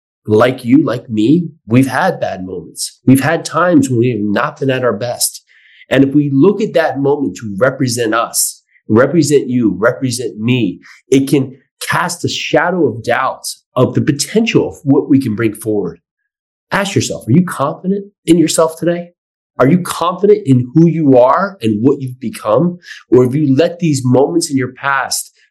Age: 30-49